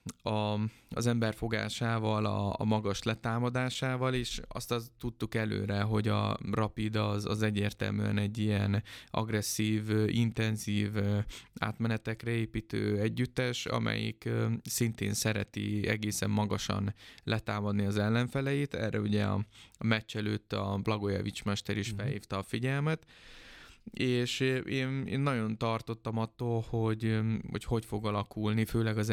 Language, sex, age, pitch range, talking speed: Hungarian, male, 20-39, 105-115 Hz, 120 wpm